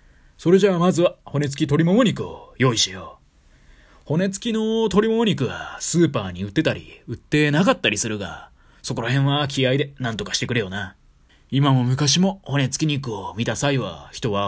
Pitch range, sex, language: 115-165 Hz, male, Japanese